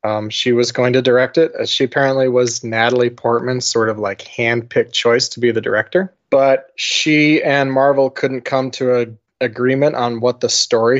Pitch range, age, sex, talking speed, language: 120-140 Hz, 20-39, male, 190 wpm, English